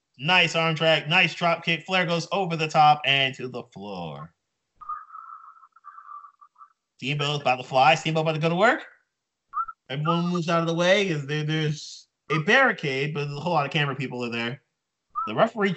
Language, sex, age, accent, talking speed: English, male, 30-49, American, 175 wpm